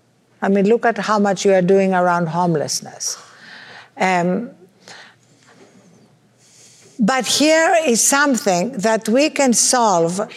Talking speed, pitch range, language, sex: 115 wpm, 200-250 Hz, English, female